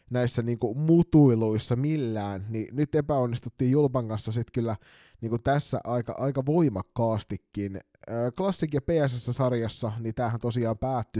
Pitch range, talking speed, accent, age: 110-135 Hz, 125 wpm, native, 20-39